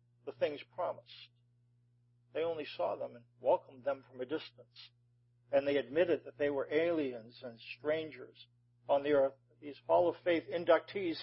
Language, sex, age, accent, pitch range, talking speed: English, male, 50-69, American, 120-175 Hz, 155 wpm